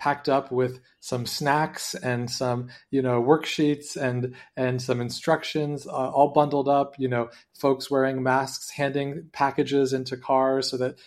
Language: English